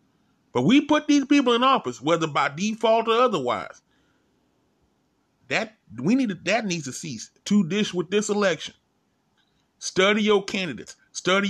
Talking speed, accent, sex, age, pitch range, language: 150 wpm, American, male, 30-49, 135-195 Hz, English